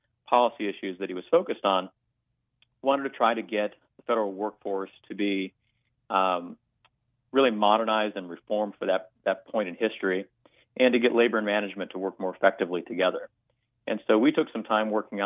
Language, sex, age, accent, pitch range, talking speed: English, male, 40-59, American, 95-115 Hz, 180 wpm